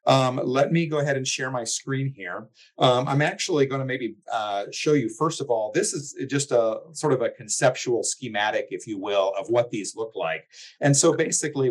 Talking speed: 215 wpm